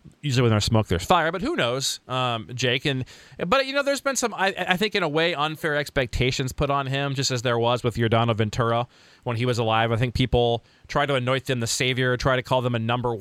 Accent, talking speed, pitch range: American, 250 wpm, 120-165 Hz